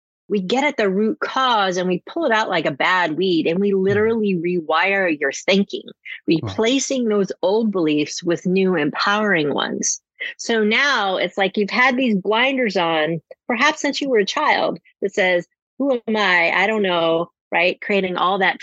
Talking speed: 180 wpm